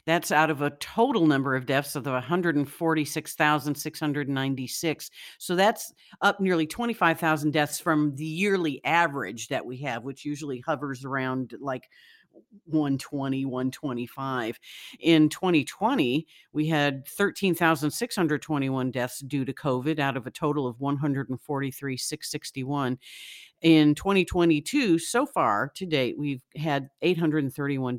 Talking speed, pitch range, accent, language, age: 120 wpm, 135-165 Hz, American, English, 50-69